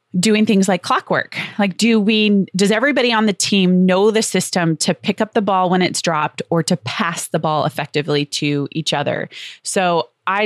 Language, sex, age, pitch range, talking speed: English, female, 20-39, 155-185 Hz, 195 wpm